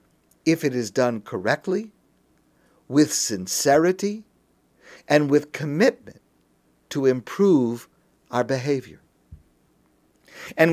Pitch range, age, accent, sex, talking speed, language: 145-195 Hz, 50-69, American, male, 85 wpm, English